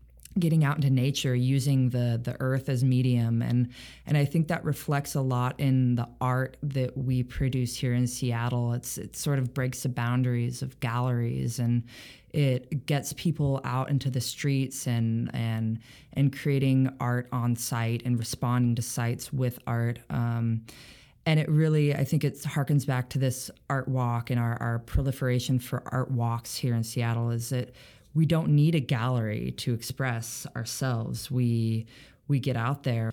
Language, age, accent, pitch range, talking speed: English, 20-39, American, 120-145 Hz, 170 wpm